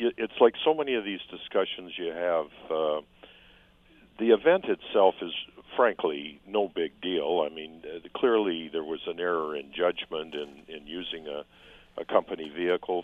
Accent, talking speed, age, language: American, 160 wpm, 50-69, English